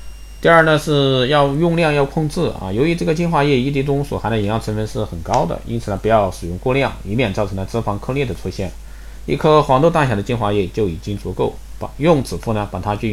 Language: Chinese